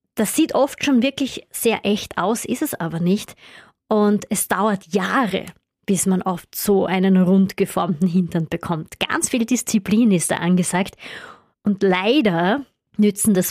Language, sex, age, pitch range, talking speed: German, female, 20-39, 185-235 Hz, 150 wpm